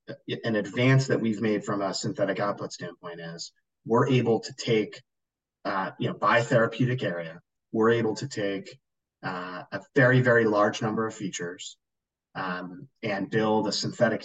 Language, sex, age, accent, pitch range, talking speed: English, male, 30-49, American, 95-125 Hz, 160 wpm